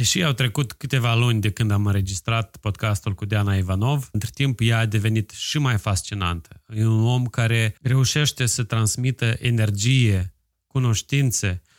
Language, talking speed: Romanian, 155 wpm